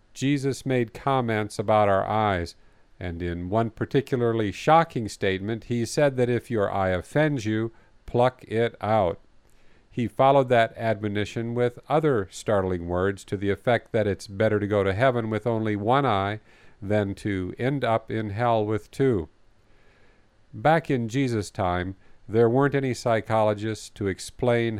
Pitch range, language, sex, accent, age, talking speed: 100-125 Hz, English, male, American, 50-69, 150 wpm